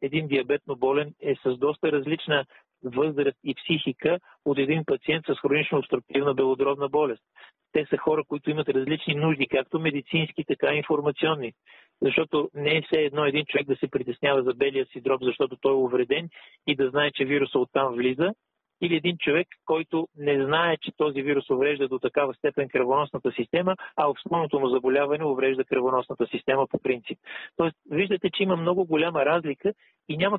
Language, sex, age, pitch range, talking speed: Bulgarian, male, 40-59, 135-160 Hz, 170 wpm